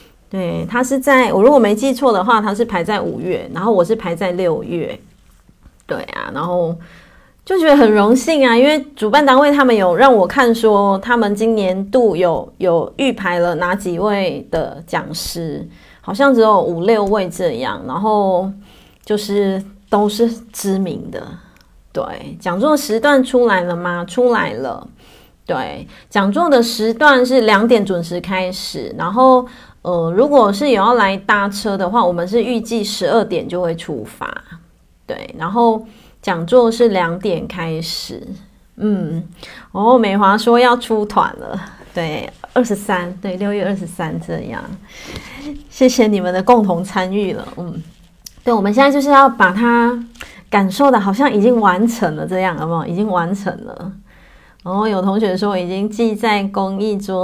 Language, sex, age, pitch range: Chinese, female, 30-49, 185-240 Hz